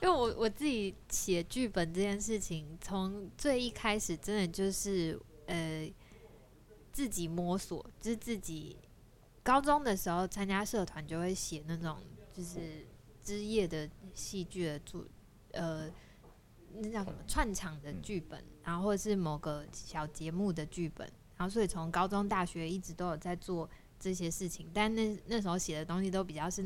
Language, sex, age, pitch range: Chinese, female, 20-39, 160-200 Hz